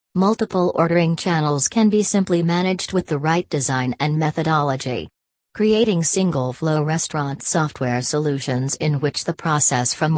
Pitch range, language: 145-175 Hz, English